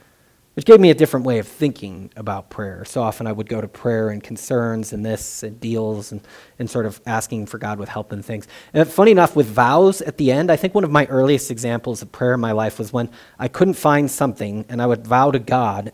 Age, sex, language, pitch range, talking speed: 30-49, male, English, 110-140 Hz, 250 wpm